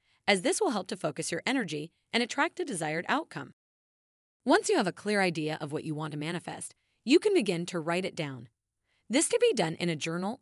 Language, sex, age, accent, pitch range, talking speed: English, female, 30-49, American, 160-235 Hz, 225 wpm